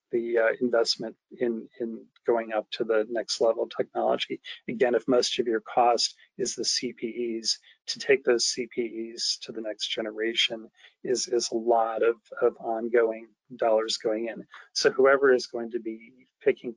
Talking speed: 165 wpm